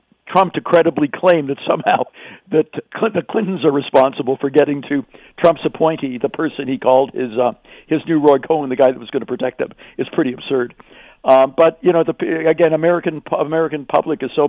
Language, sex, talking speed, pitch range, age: English, male, 200 wpm, 125-155 Hz, 60-79